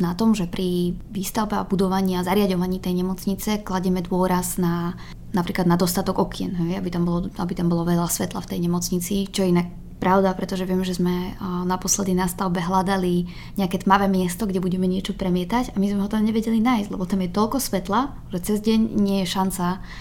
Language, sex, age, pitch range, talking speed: Slovak, female, 20-39, 175-195 Hz, 200 wpm